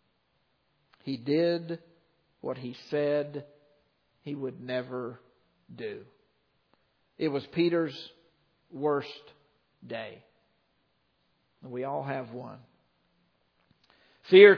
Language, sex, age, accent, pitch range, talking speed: English, male, 50-69, American, 145-195 Hz, 80 wpm